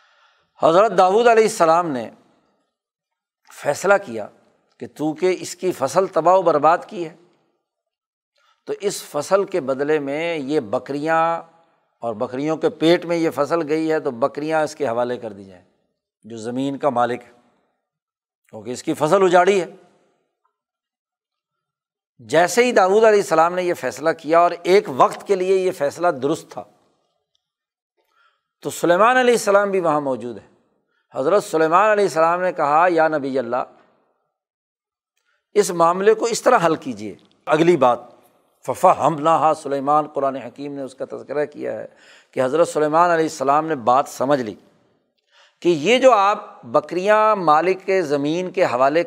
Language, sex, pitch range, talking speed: Urdu, male, 150-200 Hz, 155 wpm